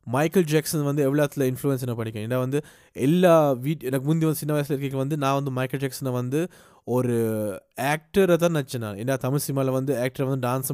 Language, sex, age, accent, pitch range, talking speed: Tamil, male, 20-39, native, 120-145 Hz, 190 wpm